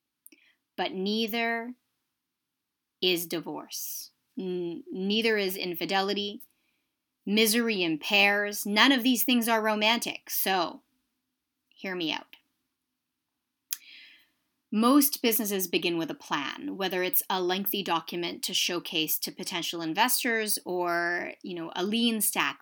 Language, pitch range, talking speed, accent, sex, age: English, 185-290 Hz, 105 wpm, American, female, 30-49